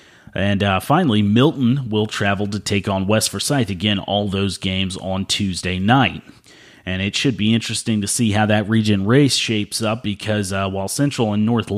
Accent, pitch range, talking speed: American, 100-125 Hz, 190 wpm